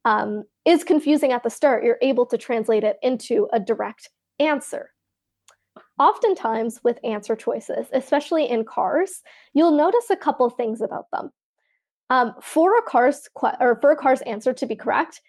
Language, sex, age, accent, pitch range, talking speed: English, female, 20-39, American, 240-315 Hz, 170 wpm